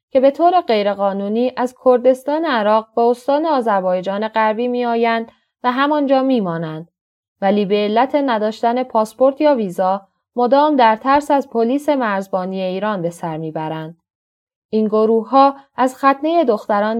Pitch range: 195-250 Hz